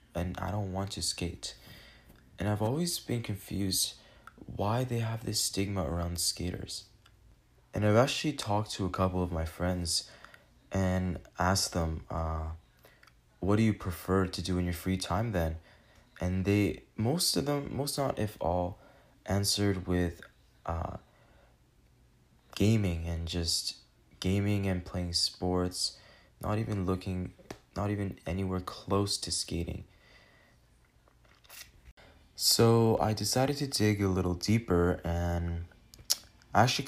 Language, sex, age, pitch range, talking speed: English, male, 20-39, 85-105 Hz, 135 wpm